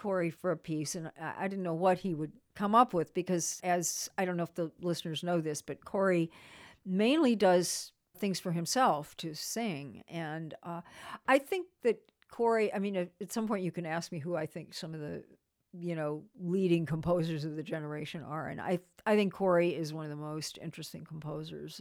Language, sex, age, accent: English, female, 50-69, American